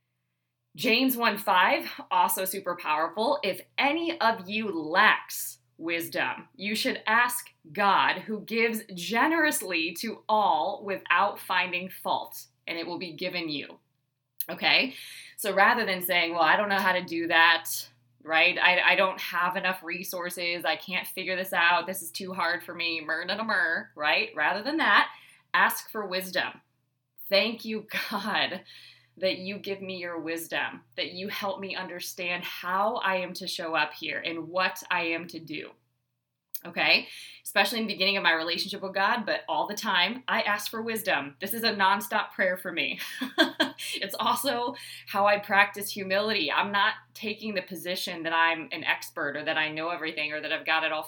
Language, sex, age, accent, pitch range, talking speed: English, female, 20-39, American, 160-200 Hz, 175 wpm